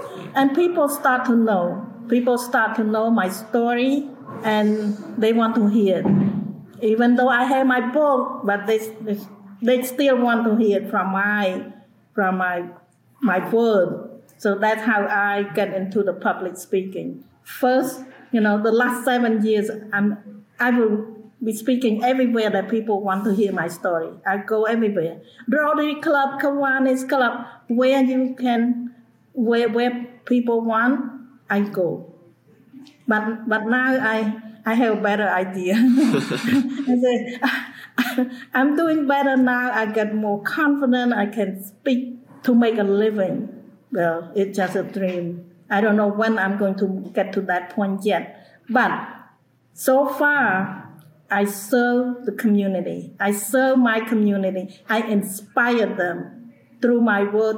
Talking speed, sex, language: 150 wpm, female, English